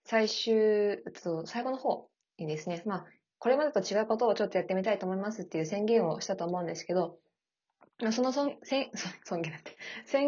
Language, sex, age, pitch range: Japanese, female, 20-39, 170-225 Hz